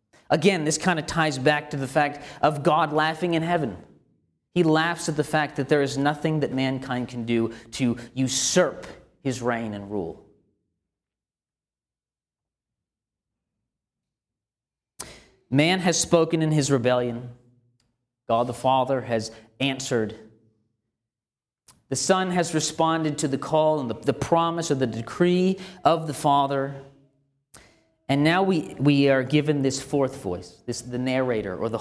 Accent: American